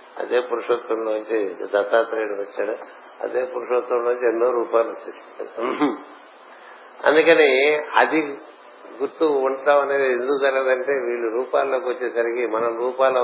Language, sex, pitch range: Telugu, male, 120-150 Hz